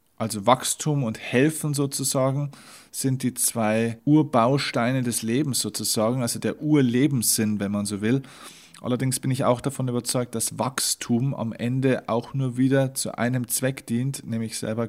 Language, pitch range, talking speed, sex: German, 110-130 Hz, 155 wpm, male